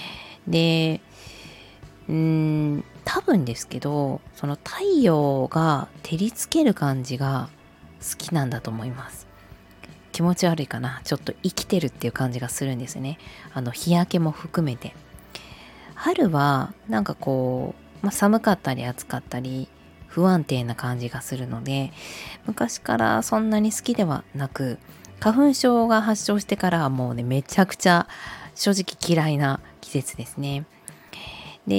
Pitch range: 130-190 Hz